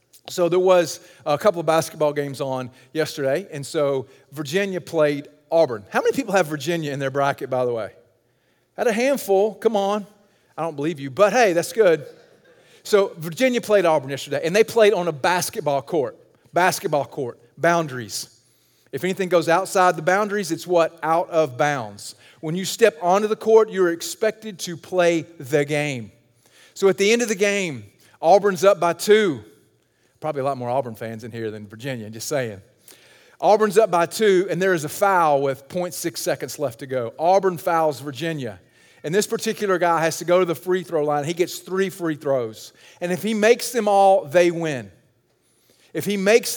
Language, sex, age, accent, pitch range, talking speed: English, male, 40-59, American, 150-200 Hz, 190 wpm